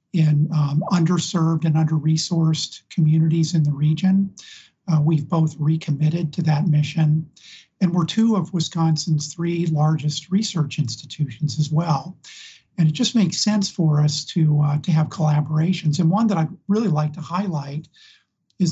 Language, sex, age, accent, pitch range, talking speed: English, male, 50-69, American, 150-180 Hz, 150 wpm